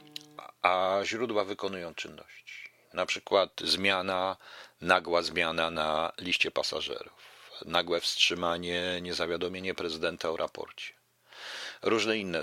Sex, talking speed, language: male, 95 wpm, Polish